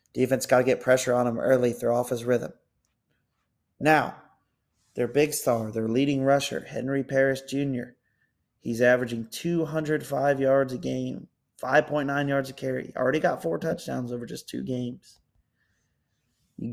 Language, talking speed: English, 145 wpm